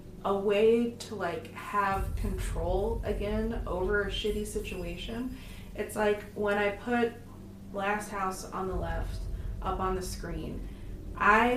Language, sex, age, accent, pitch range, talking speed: English, female, 20-39, American, 170-210 Hz, 135 wpm